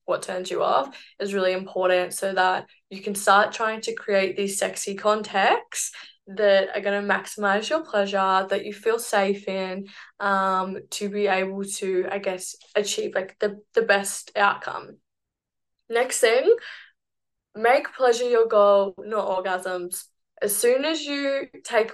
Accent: Australian